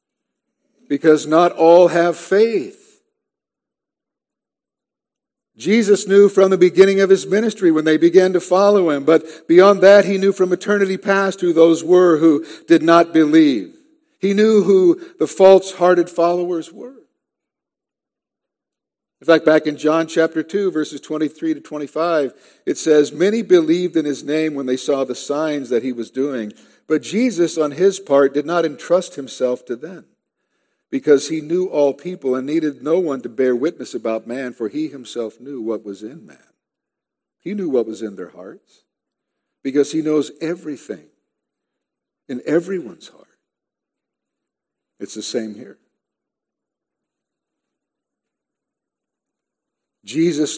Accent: American